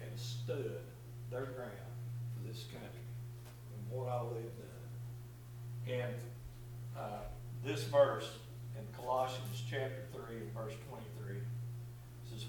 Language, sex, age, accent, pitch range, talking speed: English, male, 60-79, American, 115-120 Hz, 105 wpm